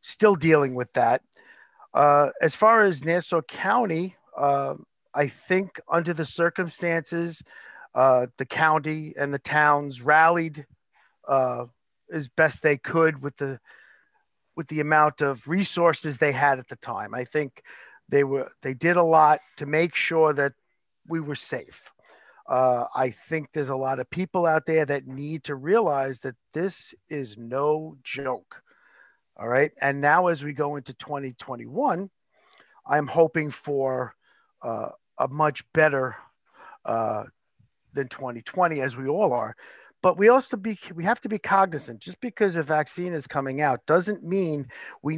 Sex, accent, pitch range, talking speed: male, American, 140-175 Hz, 155 wpm